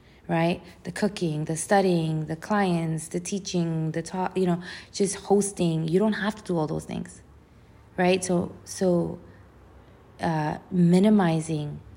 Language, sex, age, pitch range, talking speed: English, female, 20-39, 150-185 Hz, 140 wpm